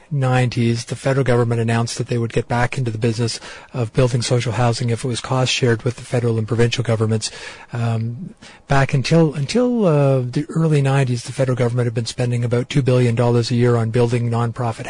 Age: 40-59